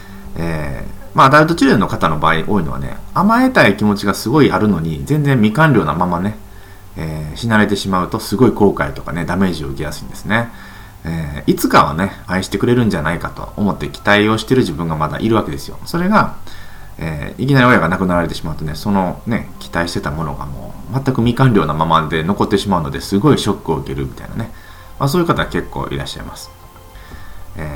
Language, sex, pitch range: Japanese, male, 80-120 Hz